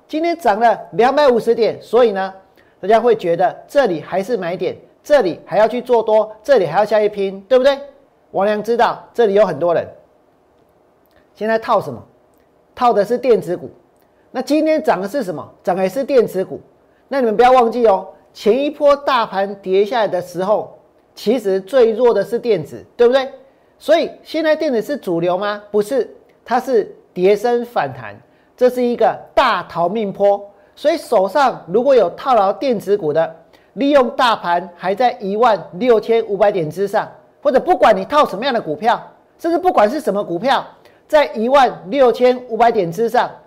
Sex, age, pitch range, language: male, 40-59, 200-275 Hz, Chinese